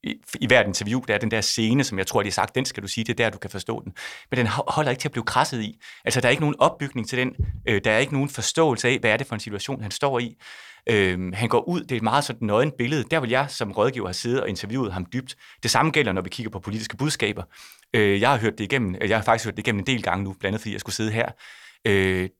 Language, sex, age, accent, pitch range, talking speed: Danish, male, 30-49, native, 105-130 Hz, 305 wpm